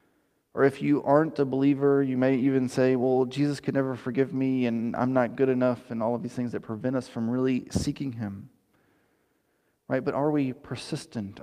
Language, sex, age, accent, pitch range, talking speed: English, male, 30-49, American, 125-150 Hz, 200 wpm